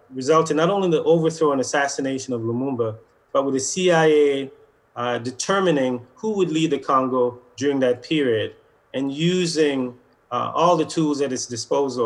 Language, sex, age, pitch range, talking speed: English, male, 30-49, 125-165 Hz, 165 wpm